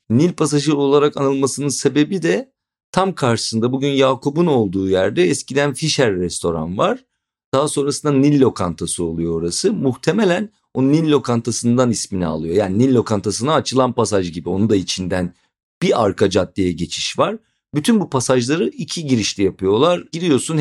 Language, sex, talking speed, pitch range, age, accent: Turkish, male, 145 wpm, 100-145 Hz, 50-69, native